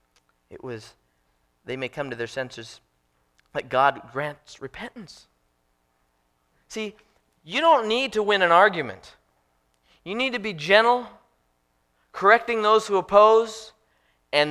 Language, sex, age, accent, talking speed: English, male, 40-59, American, 125 wpm